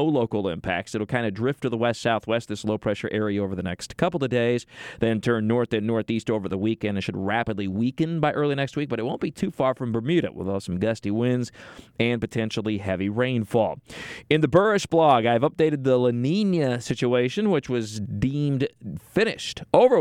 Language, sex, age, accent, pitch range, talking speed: English, male, 40-59, American, 115-160 Hz, 205 wpm